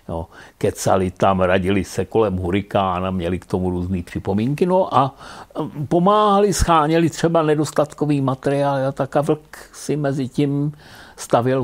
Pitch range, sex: 95-140 Hz, male